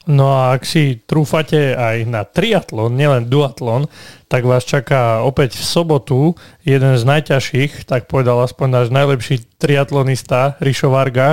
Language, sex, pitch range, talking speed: Slovak, male, 125-145 Hz, 140 wpm